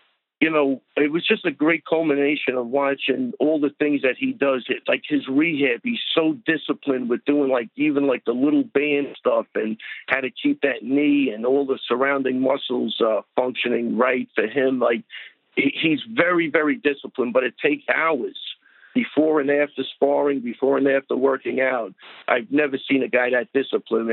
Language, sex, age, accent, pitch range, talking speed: English, male, 50-69, American, 130-155 Hz, 180 wpm